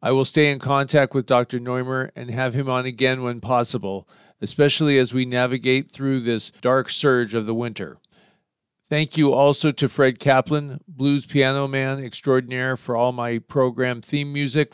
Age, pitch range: 50-69, 130-150 Hz